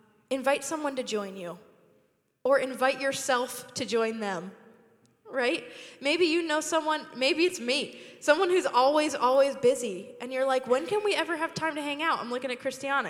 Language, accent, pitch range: English, American, 210-260 Hz